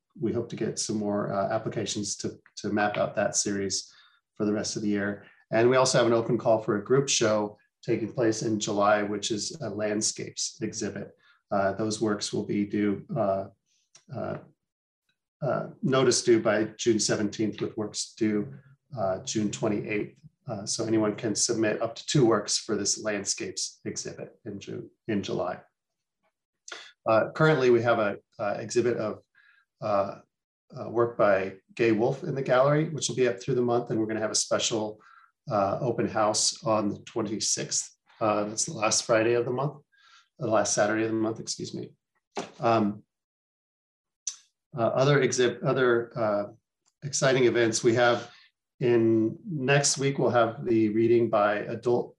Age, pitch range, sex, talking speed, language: 40-59, 105-125 Hz, male, 170 wpm, English